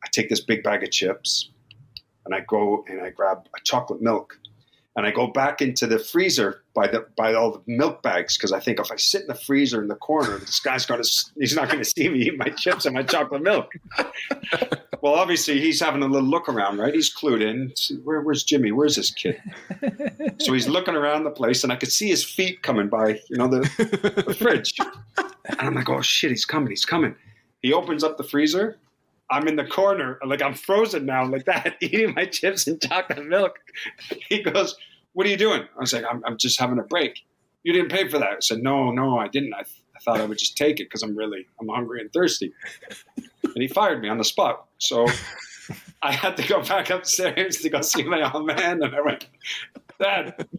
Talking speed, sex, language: 225 wpm, male, English